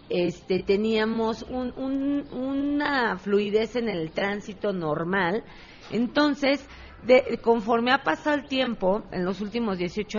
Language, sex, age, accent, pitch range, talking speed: Spanish, female, 40-59, Mexican, 165-225 Hz, 105 wpm